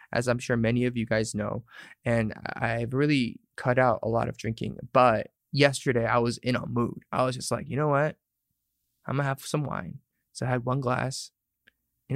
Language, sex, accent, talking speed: English, male, American, 210 wpm